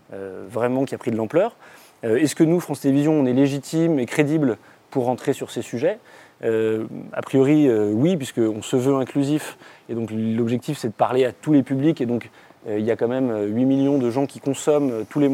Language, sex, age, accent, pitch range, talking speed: French, male, 20-39, French, 115-140 Hz, 220 wpm